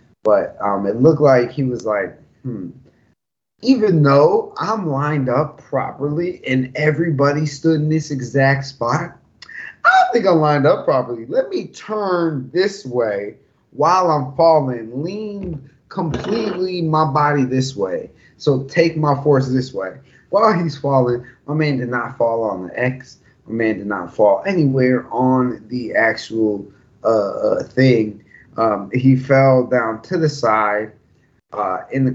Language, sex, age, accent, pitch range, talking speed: English, male, 20-39, American, 125-165 Hz, 155 wpm